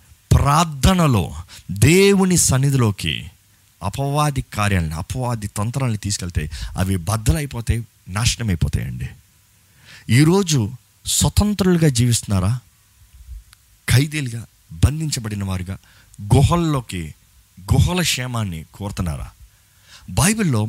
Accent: native